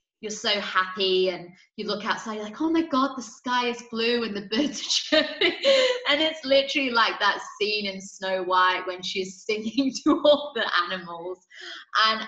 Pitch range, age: 175-225 Hz, 20-39